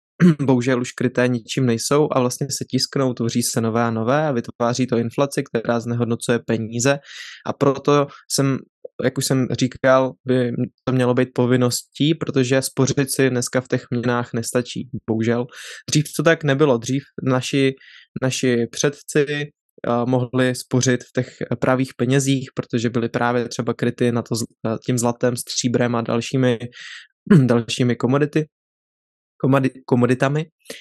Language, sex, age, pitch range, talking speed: Czech, male, 20-39, 120-135 Hz, 135 wpm